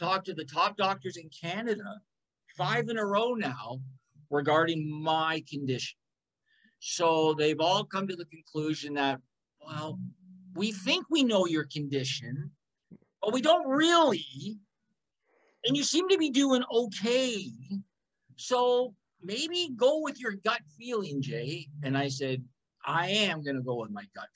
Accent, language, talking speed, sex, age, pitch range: American, English, 150 wpm, male, 50-69, 145-210 Hz